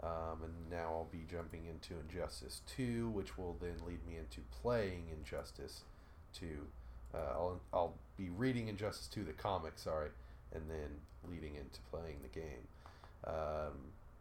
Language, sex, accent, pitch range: English, male, American, 80-100 Hz